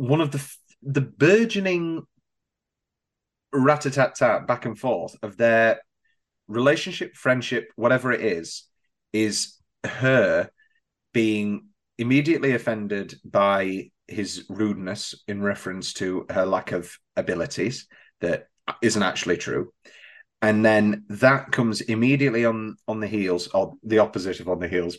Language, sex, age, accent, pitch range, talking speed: English, male, 30-49, British, 105-140 Hz, 120 wpm